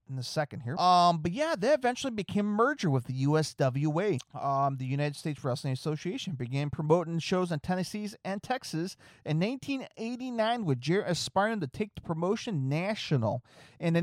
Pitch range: 130-195 Hz